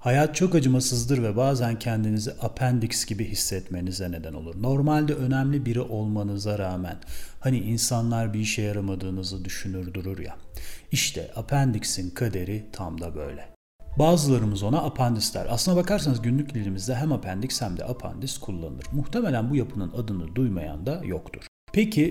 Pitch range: 100-135 Hz